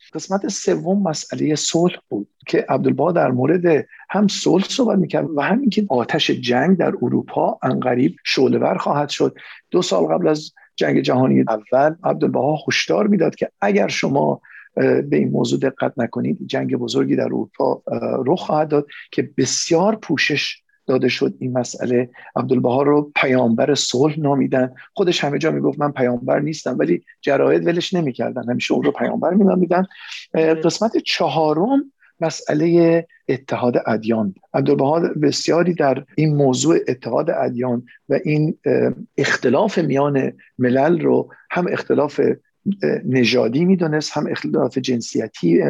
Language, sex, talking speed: Persian, male, 135 wpm